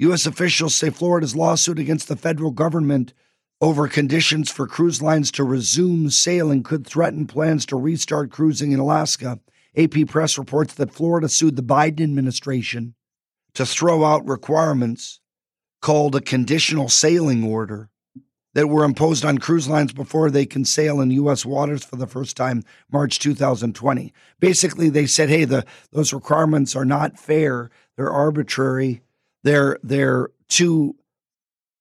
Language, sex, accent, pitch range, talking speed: English, male, American, 135-155 Hz, 145 wpm